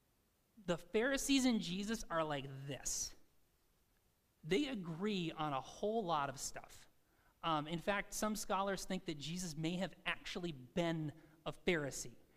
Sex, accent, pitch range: male, American, 155-200 Hz